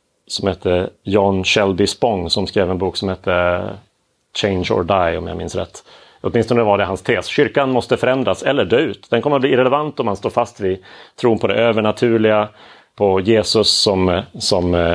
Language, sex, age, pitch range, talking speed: Swedish, male, 30-49, 95-115 Hz, 195 wpm